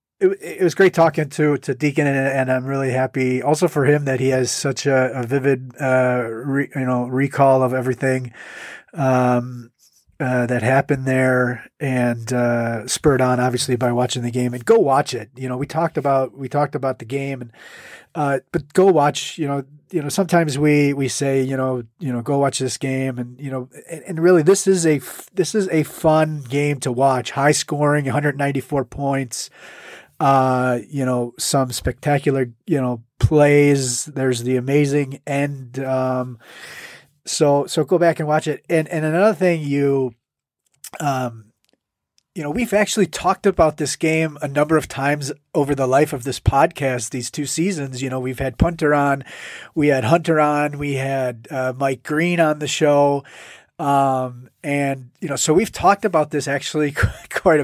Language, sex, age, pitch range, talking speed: English, male, 30-49, 130-150 Hz, 185 wpm